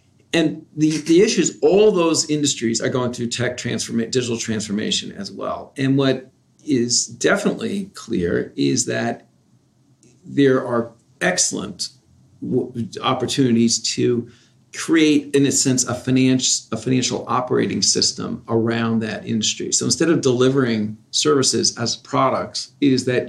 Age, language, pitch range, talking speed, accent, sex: 40-59, English, 115-140 Hz, 135 wpm, American, male